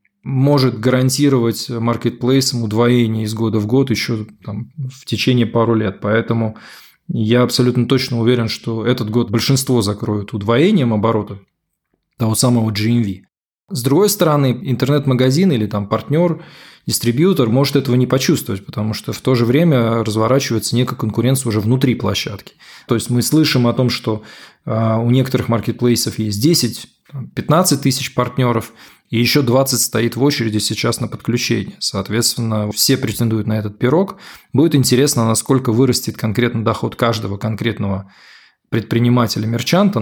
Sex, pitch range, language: male, 110-130 Hz, Russian